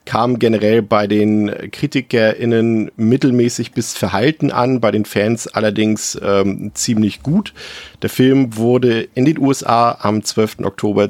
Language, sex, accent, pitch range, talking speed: German, male, German, 100-125 Hz, 135 wpm